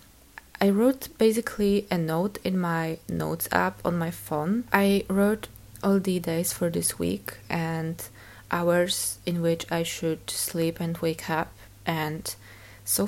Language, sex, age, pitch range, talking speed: English, female, 20-39, 155-180 Hz, 145 wpm